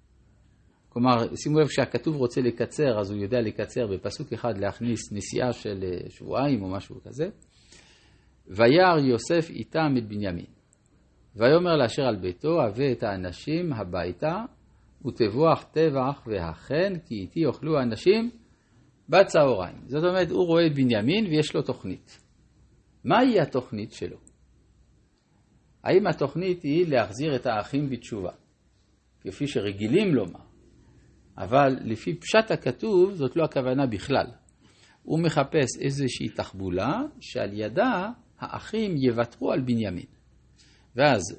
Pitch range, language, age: 105-150 Hz, Hebrew, 50-69